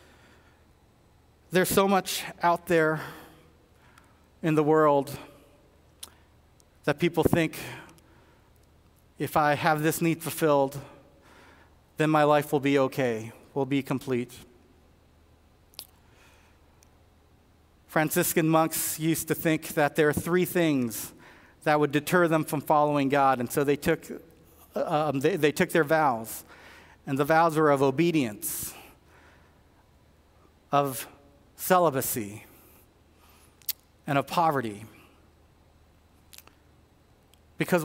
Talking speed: 105 wpm